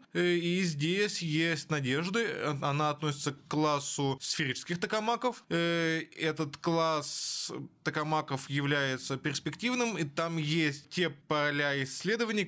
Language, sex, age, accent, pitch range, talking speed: Russian, male, 20-39, native, 135-170 Hz, 100 wpm